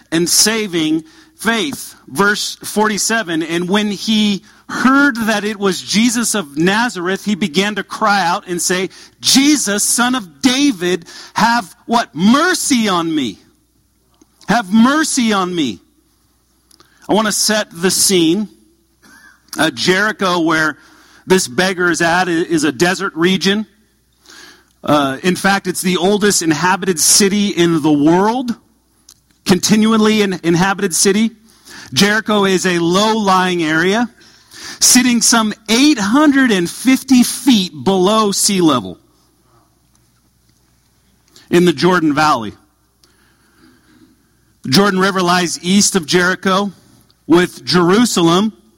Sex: male